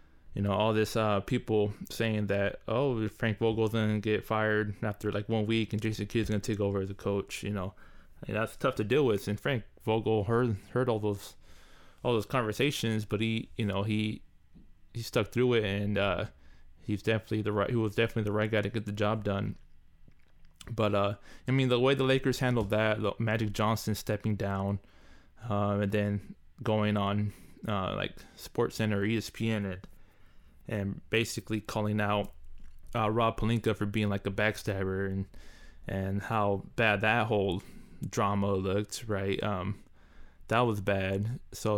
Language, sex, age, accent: English, male, 20-39, American